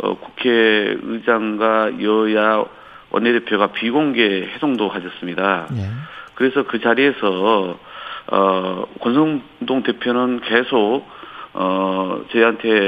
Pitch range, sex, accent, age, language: 100-130 Hz, male, native, 40-59, Korean